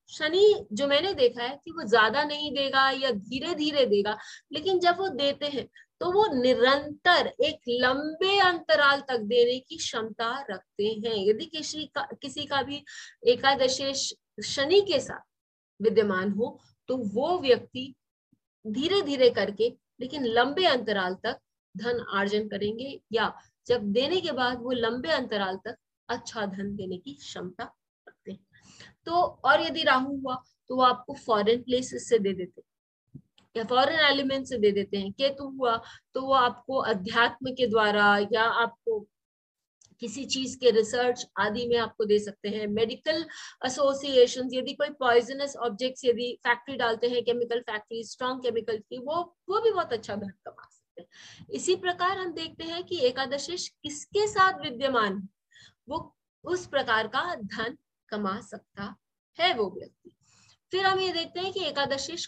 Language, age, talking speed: English, 30-49, 140 wpm